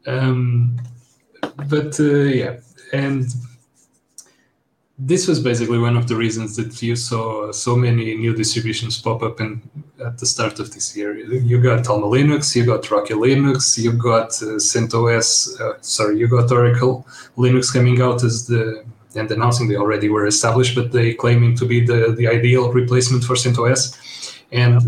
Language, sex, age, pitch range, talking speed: English, male, 30-49, 115-130 Hz, 165 wpm